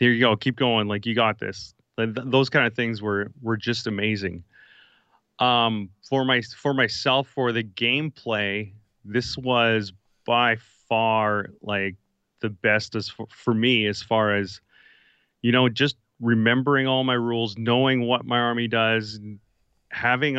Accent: American